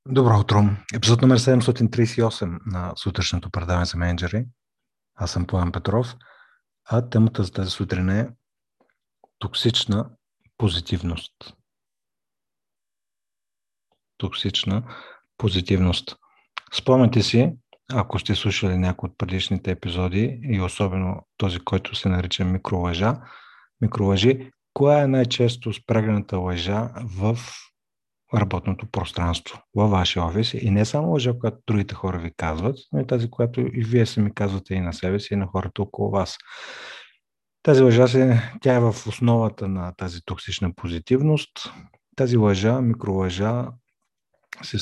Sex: male